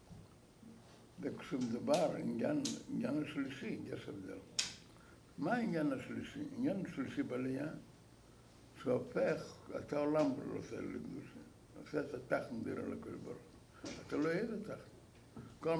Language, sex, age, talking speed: English, male, 60-79, 115 wpm